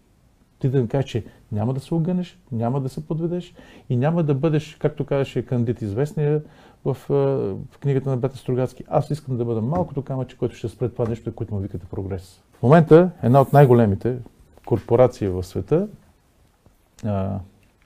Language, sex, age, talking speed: Bulgarian, male, 40-59, 175 wpm